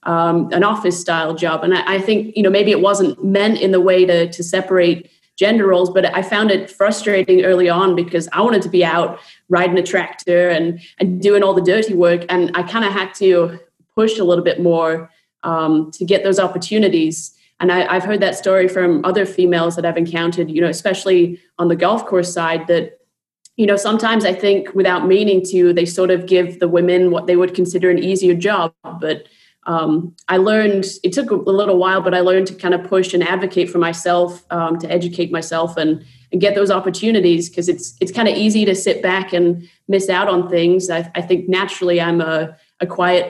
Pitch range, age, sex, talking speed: 170-190 Hz, 30-49, female, 215 wpm